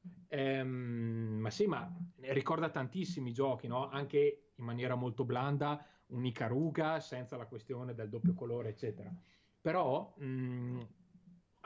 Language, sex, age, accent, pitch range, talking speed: Italian, male, 30-49, native, 115-145 Hz, 120 wpm